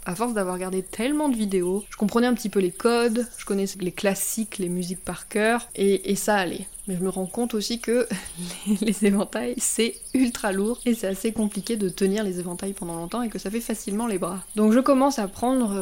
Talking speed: 230 wpm